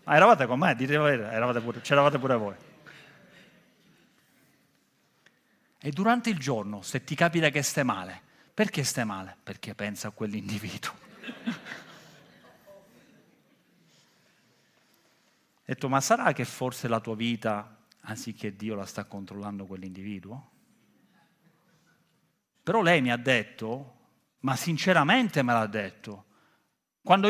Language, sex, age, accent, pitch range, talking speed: Italian, male, 40-59, native, 120-185 Hz, 115 wpm